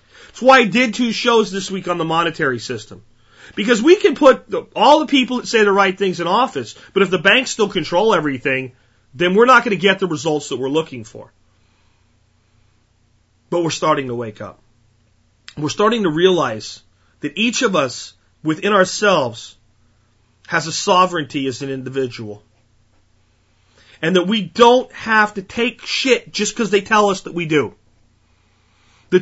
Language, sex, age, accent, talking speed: English, male, 40-59, American, 175 wpm